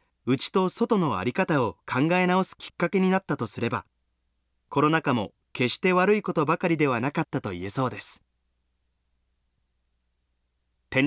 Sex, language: male, Japanese